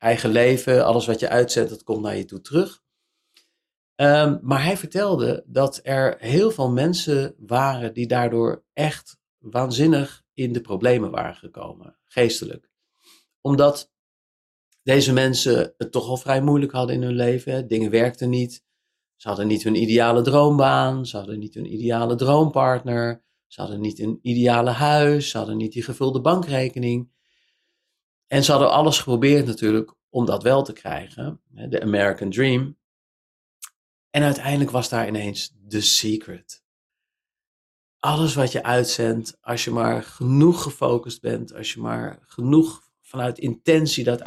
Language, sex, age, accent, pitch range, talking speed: Dutch, male, 40-59, Dutch, 110-140 Hz, 145 wpm